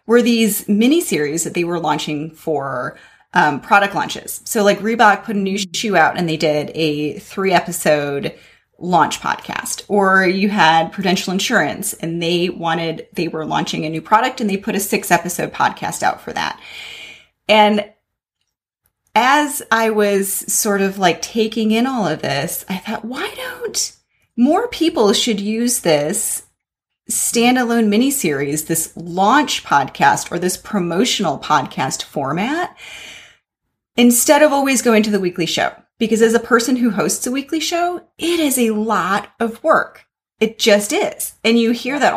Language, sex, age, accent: English, female, 30-49, American